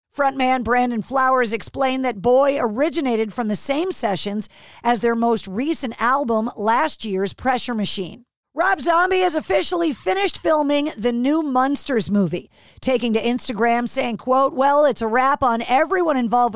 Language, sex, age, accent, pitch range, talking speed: English, female, 50-69, American, 225-280 Hz, 150 wpm